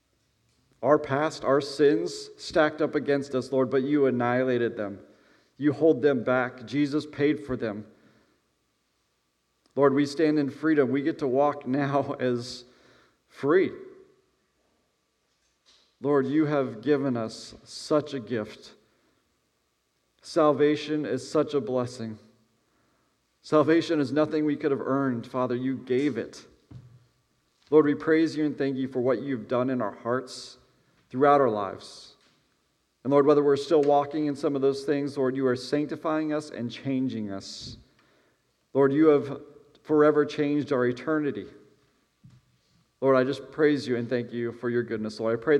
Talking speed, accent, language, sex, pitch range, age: 150 wpm, American, English, male, 120-145 Hz, 40-59